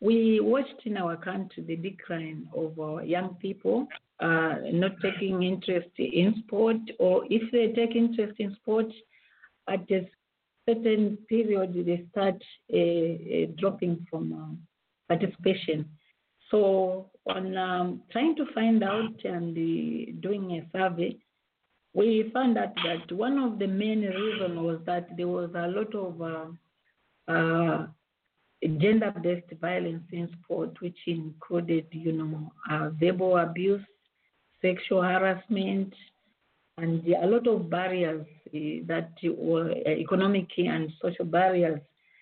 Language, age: English, 50-69